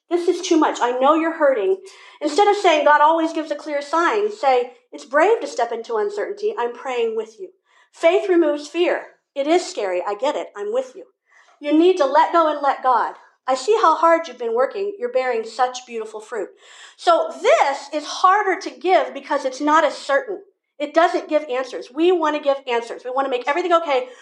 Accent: American